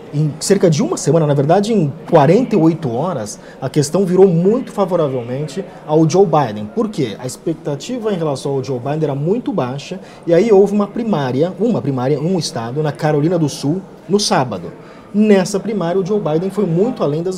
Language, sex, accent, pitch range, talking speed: Portuguese, male, Brazilian, 145-195 Hz, 185 wpm